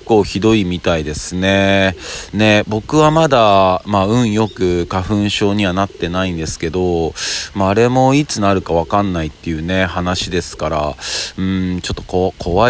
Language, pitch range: Japanese, 85-105 Hz